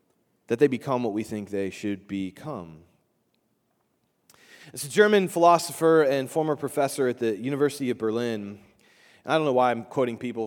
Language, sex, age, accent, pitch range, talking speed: English, male, 30-49, American, 105-150 Hz, 160 wpm